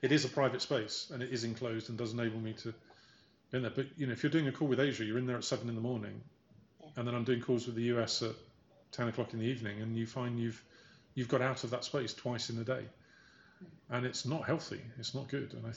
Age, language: 30-49, English